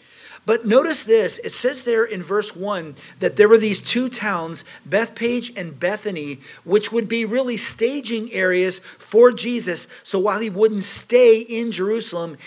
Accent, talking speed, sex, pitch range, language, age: American, 160 wpm, male, 170-220 Hz, English, 40-59